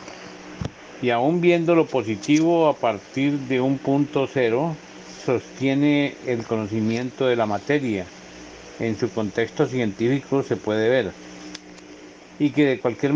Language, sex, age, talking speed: Spanish, male, 50-69, 130 wpm